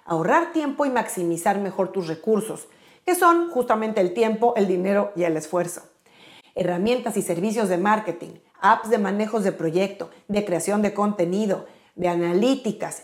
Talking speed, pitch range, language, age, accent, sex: 150 wpm, 180-245 Hz, Spanish, 40-59, Mexican, female